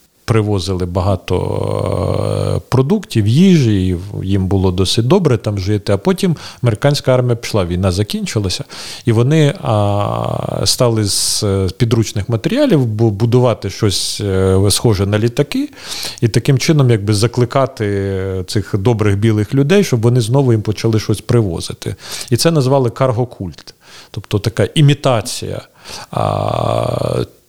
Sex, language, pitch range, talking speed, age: male, Ukrainian, 105-135 Hz, 115 wpm, 40-59